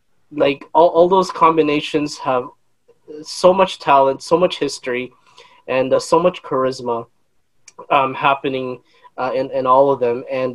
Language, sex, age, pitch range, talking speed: English, male, 20-39, 140-190 Hz, 150 wpm